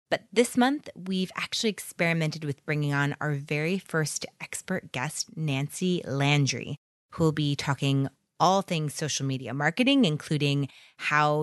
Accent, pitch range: American, 145-190 Hz